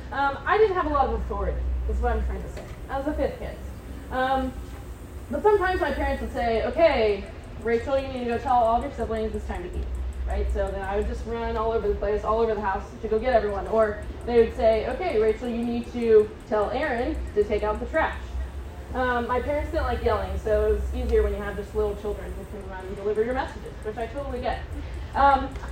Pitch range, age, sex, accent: 215-280 Hz, 10-29, female, American